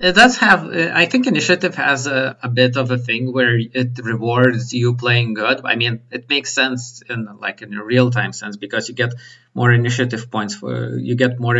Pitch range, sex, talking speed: 110-130 Hz, male, 205 wpm